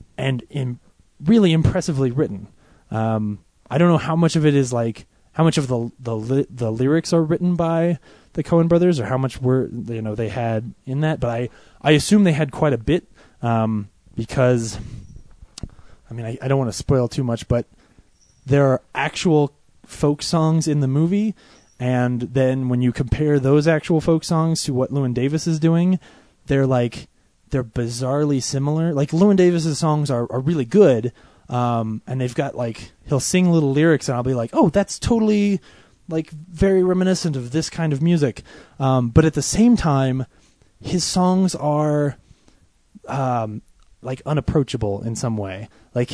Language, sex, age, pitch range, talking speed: English, male, 20-39, 125-165 Hz, 175 wpm